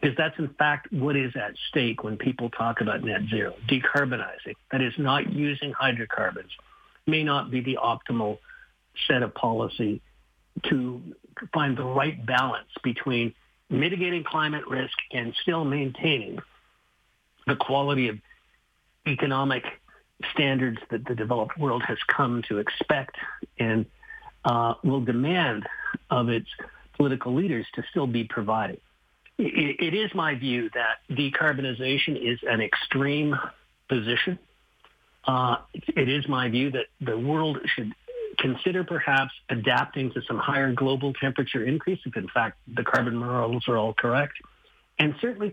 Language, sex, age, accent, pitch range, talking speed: English, male, 50-69, American, 120-150 Hz, 135 wpm